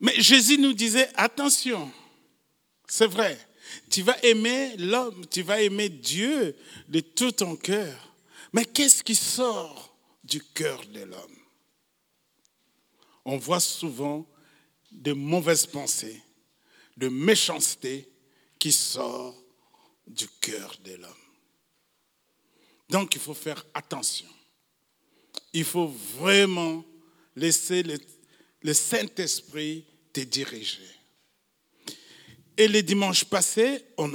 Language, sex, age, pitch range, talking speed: French, male, 50-69, 150-210 Hz, 105 wpm